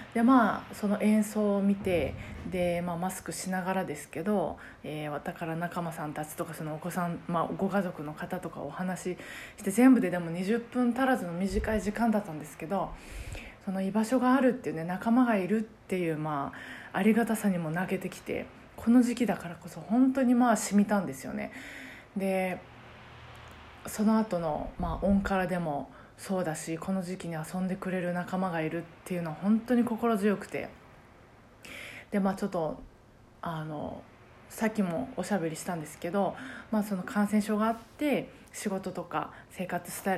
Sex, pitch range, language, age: female, 170-210 Hz, Japanese, 20-39